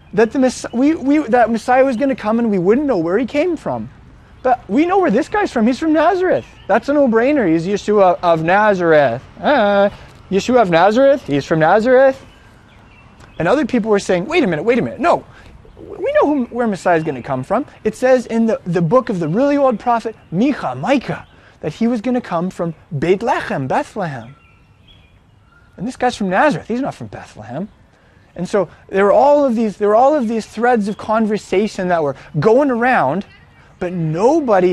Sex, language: male, English